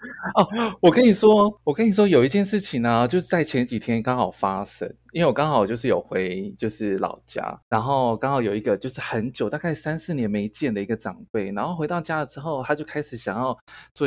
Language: Chinese